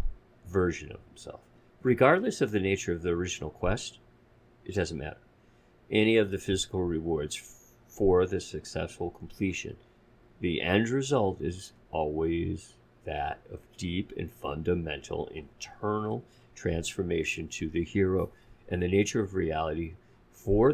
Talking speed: 125 wpm